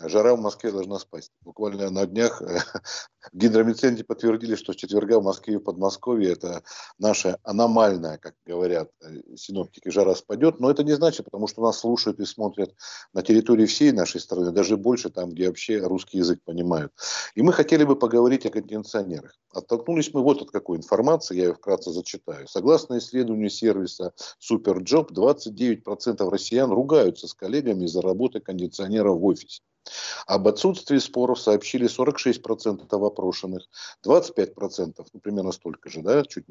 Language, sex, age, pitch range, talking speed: Russian, male, 50-69, 95-120 Hz, 155 wpm